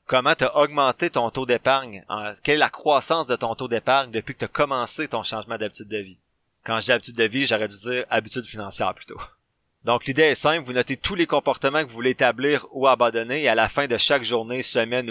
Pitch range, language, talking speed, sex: 115-135 Hz, French, 240 wpm, male